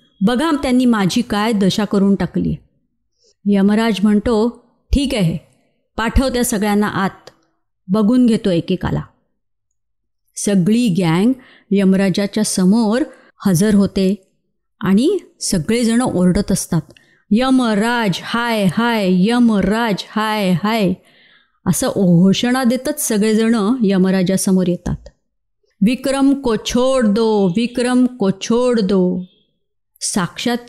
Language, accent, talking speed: Marathi, native, 90 wpm